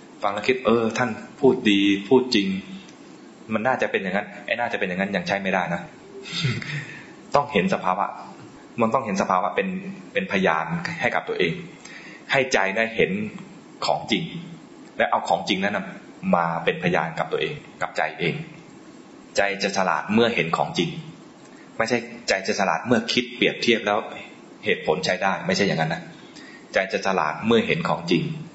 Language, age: English, 20-39